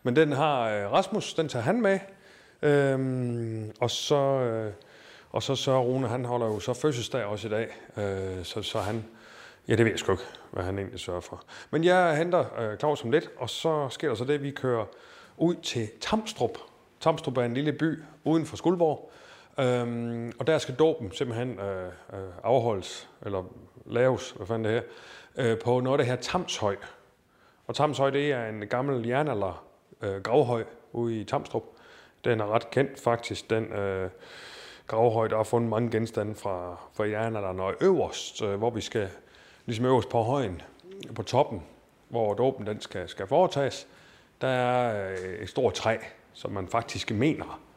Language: Danish